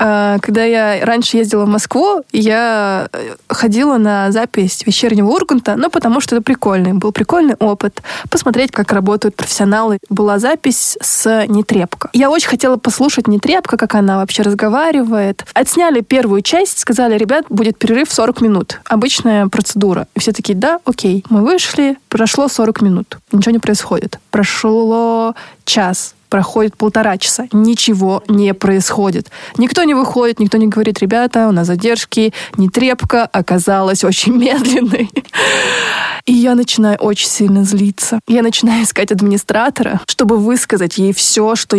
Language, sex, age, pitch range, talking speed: Russian, female, 20-39, 205-245 Hz, 140 wpm